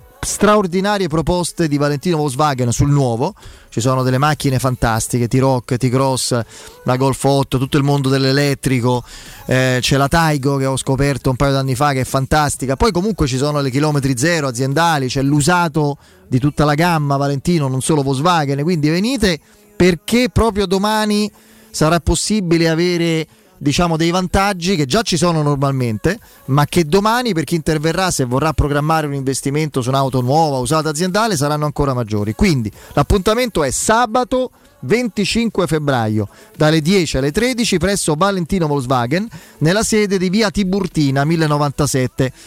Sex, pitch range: male, 135-185 Hz